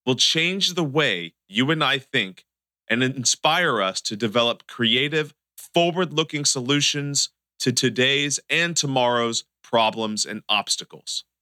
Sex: male